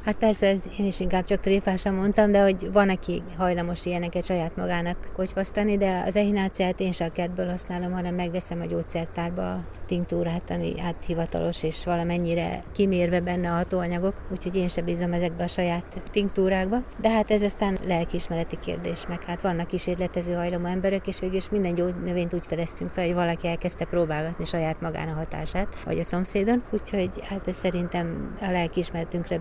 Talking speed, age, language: 170 wpm, 30-49, Hungarian